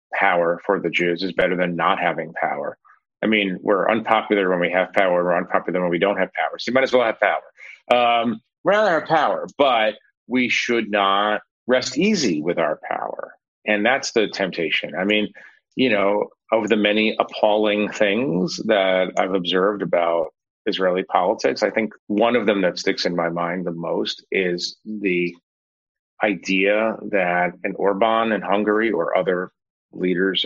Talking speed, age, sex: 175 wpm, 30-49, male